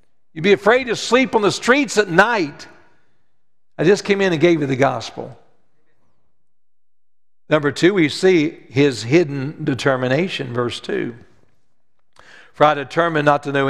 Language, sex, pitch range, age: English, male, 125-180 Hz, 60-79